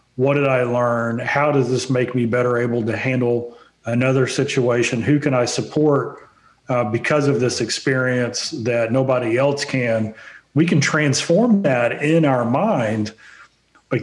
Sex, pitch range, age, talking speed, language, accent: male, 120-145 Hz, 40-59, 155 wpm, English, American